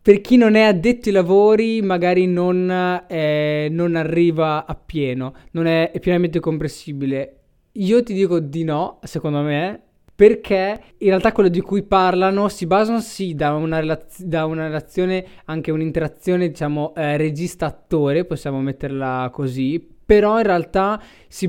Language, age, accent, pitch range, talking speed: Italian, 20-39, native, 150-190 Hz, 150 wpm